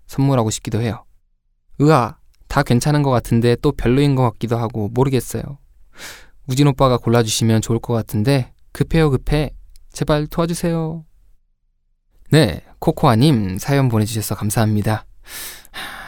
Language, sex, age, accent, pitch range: Korean, male, 20-39, native, 110-150 Hz